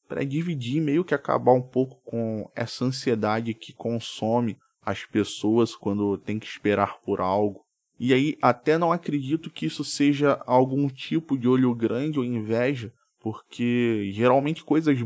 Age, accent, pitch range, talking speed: 20-39, Brazilian, 110-135 Hz, 150 wpm